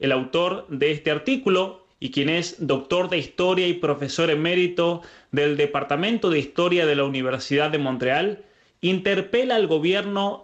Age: 30-49